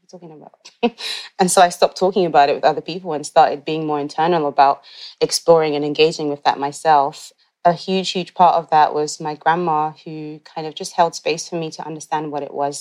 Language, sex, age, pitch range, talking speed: English, female, 20-39, 145-170 Hz, 215 wpm